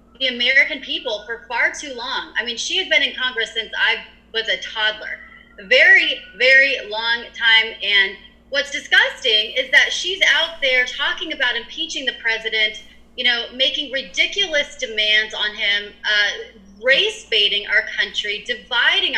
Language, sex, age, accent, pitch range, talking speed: English, female, 30-49, American, 210-285 Hz, 155 wpm